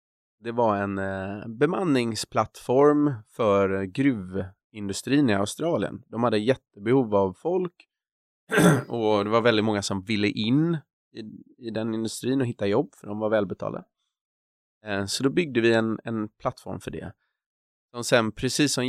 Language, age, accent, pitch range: Swedish, 30-49, native, 100-120 Hz